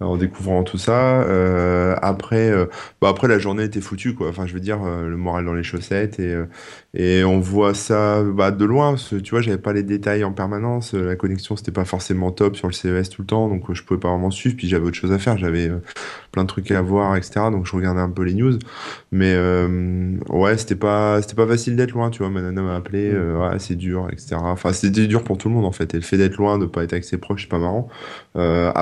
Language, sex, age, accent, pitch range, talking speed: French, male, 20-39, French, 90-105 Hz, 265 wpm